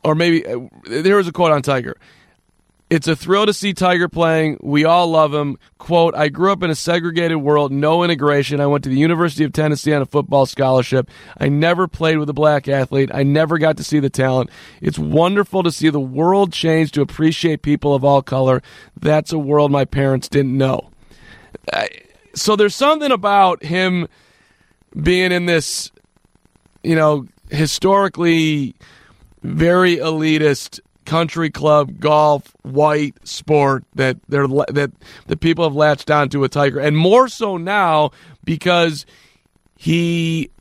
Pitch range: 145-170 Hz